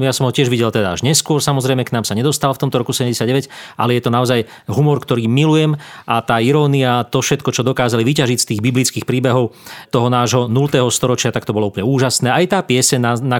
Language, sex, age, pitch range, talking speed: Slovak, male, 40-59, 120-145 Hz, 215 wpm